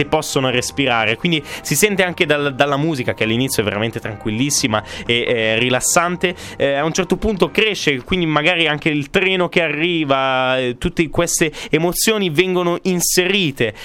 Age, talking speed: 20-39, 150 wpm